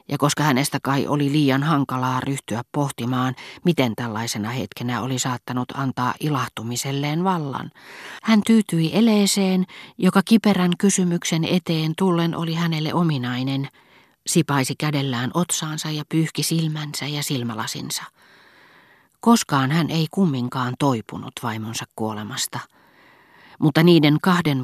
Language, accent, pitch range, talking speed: Finnish, native, 130-170 Hz, 110 wpm